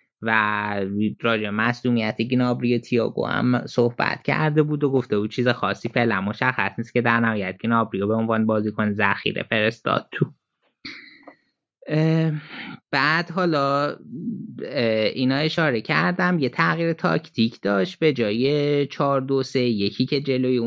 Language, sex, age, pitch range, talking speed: Persian, male, 20-39, 105-135 Hz, 120 wpm